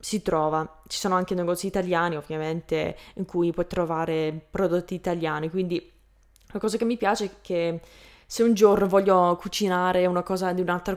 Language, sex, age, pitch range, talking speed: Italian, female, 20-39, 175-210 Hz, 170 wpm